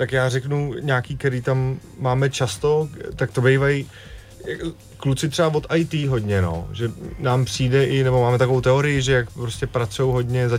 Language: Czech